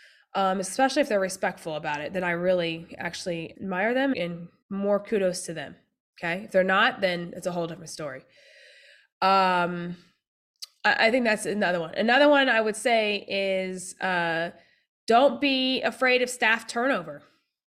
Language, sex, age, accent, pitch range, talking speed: English, female, 20-39, American, 195-275 Hz, 165 wpm